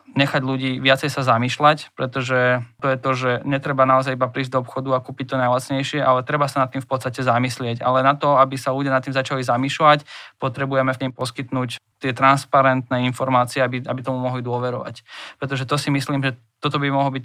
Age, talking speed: 20-39, 205 wpm